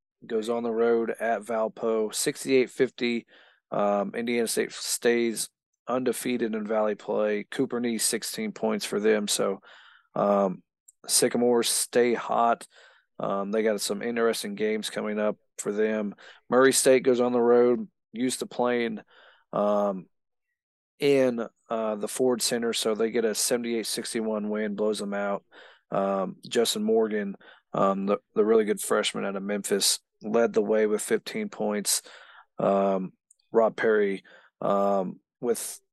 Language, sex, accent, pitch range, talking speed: English, male, American, 105-130 Hz, 140 wpm